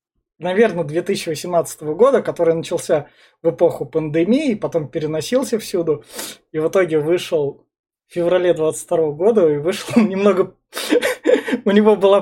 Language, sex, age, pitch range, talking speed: Russian, male, 20-39, 160-200 Hz, 125 wpm